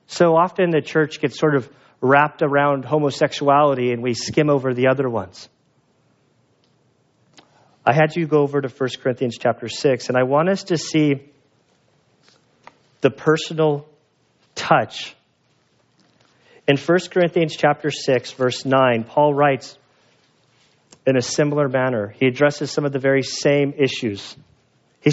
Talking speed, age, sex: 140 wpm, 40-59, male